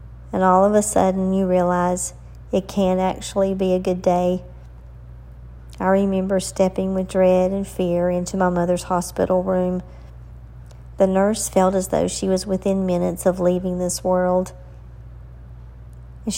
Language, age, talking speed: English, 50-69, 145 wpm